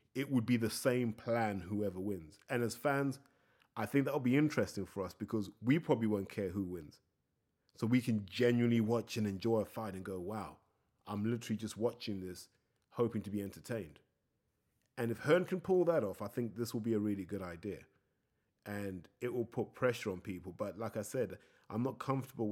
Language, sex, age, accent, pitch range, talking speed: English, male, 30-49, British, 100-130 Hz, 205 wpm